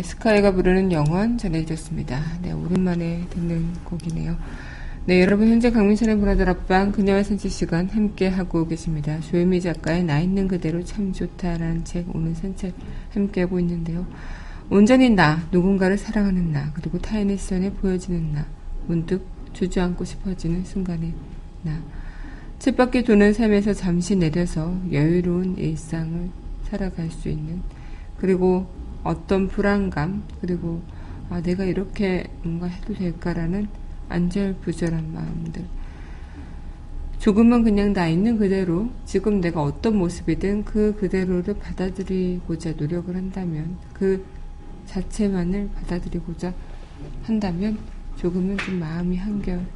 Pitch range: 165-195 Hz